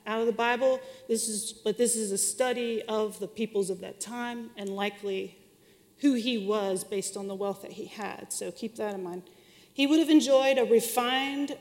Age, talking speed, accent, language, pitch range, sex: 40-59, 205 wpm, American, English, 205-260 Hz, female